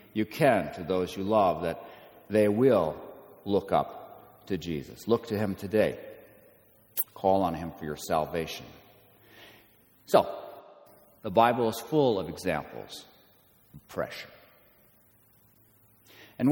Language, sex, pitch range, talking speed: English, male, 95-125 Hz, 120 wpm